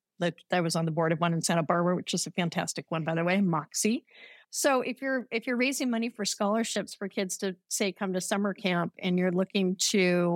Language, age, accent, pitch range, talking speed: English, 50-69, American, 185-220 Hz, 235 wpm